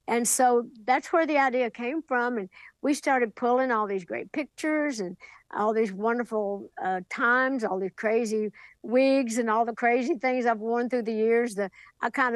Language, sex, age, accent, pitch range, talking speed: English, female, 60-79, American, 205-255 Hz, 190 wpm